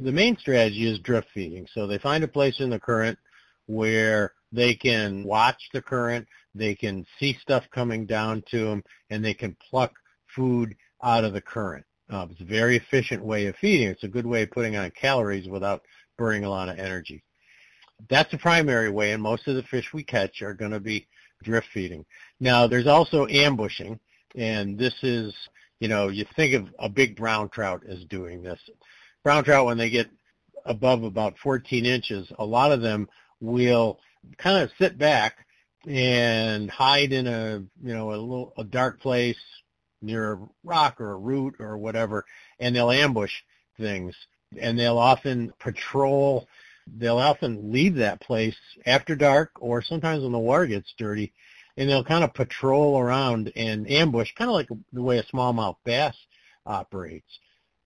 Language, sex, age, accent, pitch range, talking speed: English, male, 50-69, American, 105-130 Hz, 175 wpm